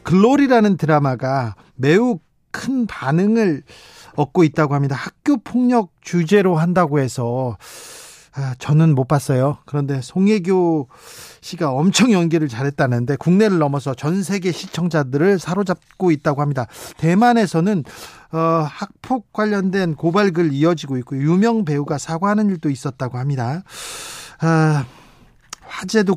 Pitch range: 145-190 Hz